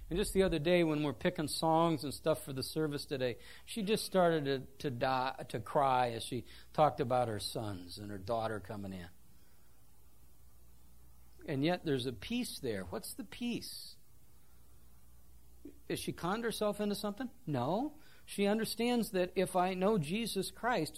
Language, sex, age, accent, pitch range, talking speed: English, male, 50-69, American, 130-200 Hz, 165 wpm